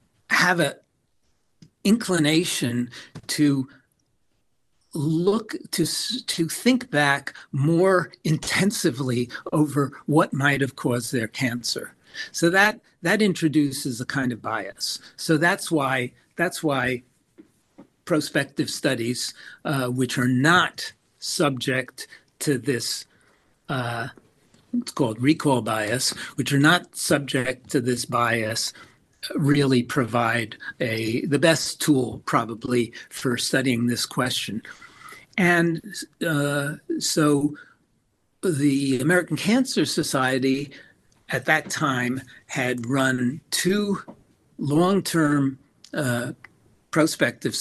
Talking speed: 105 wpm